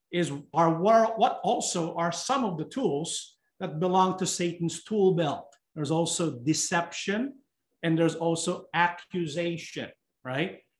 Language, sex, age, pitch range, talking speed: English, male, 50-69, 170-215 Hz, 135 wpm